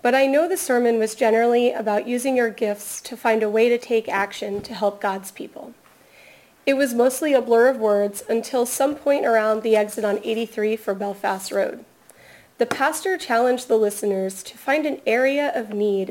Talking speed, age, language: 190 wpm, 30-49, English